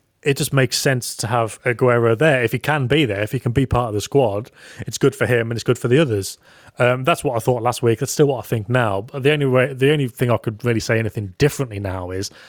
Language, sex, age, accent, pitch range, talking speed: English, male, 30-49, British, 115-145 Hz, 285 wpm